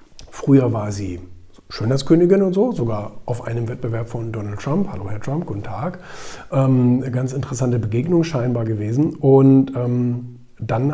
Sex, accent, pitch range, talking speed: male, German, 115-145 Hz, 150 wpm